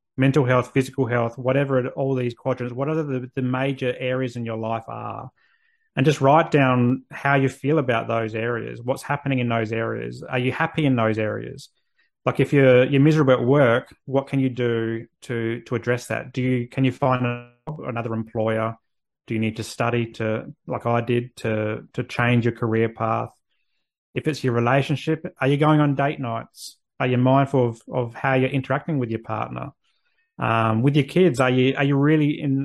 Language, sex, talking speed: English, male, 195 wpm